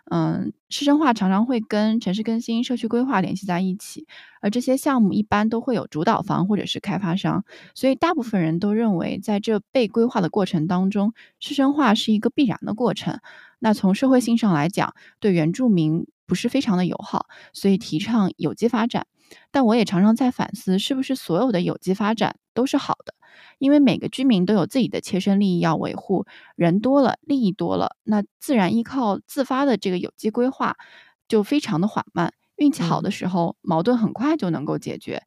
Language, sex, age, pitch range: Chinese, female, 20-39, 190-250 Hz